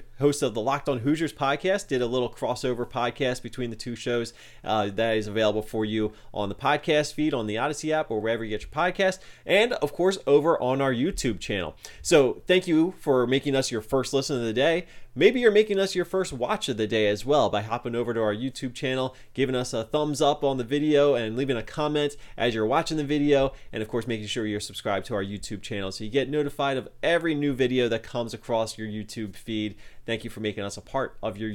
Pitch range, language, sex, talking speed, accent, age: 110-145 Hz, English, male, 240 wpm, American, 30-49